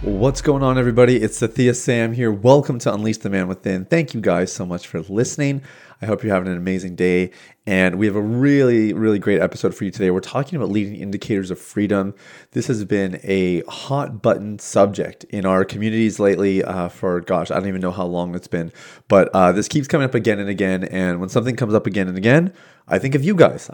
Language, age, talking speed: English, 30-49, 230 wpm